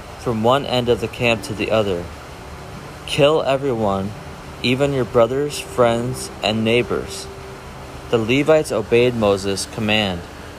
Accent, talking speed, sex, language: American, 125 wpm, male, English